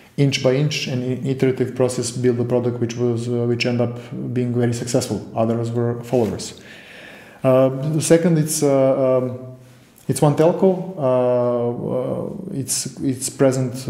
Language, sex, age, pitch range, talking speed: English, male, 20-39, 125-150 Hz, 150 wpm